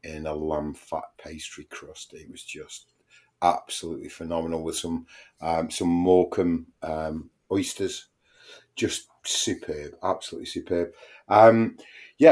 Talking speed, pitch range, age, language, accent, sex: 115 wpm, 85-100 Hz, 30-49, English, British, male